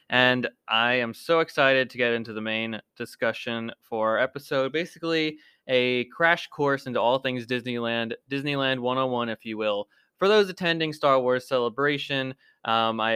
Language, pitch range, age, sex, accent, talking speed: English, 115-150 Hz, 20-39, male, American, 160 wpm